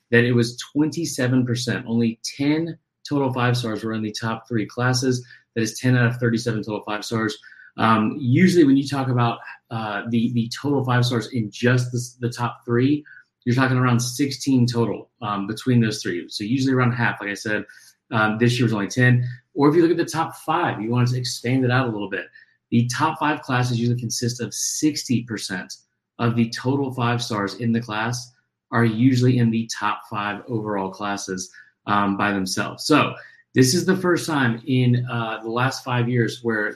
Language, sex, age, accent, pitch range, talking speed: English, male, 30-49, American, 115-130 Hz, 200 wpm